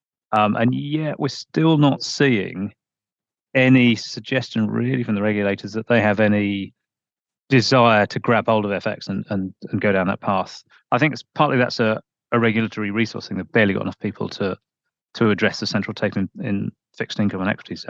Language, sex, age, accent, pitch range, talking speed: English, male, 30-49, British, 105-125 Hz, 190 wpm